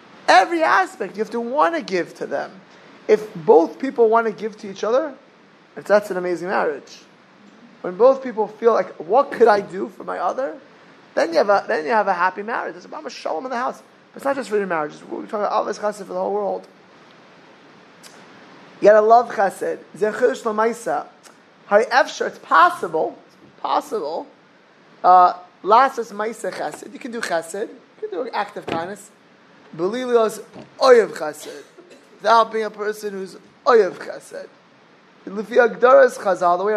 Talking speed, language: 180 wpm, English